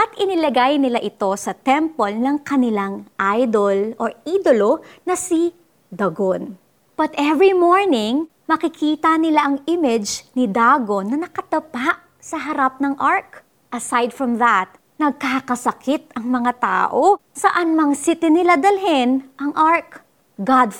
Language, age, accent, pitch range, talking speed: Filipino, 30-49, native, 215-295 Hz, 125 wpm